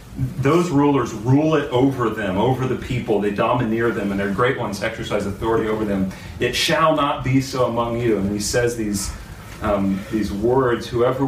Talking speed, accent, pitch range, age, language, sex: 185 wpm, American, 100-115 Hz, 40-59, English, male